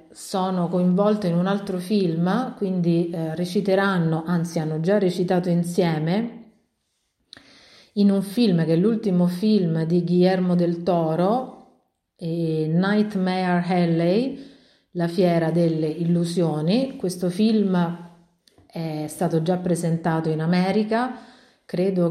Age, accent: 40-59, native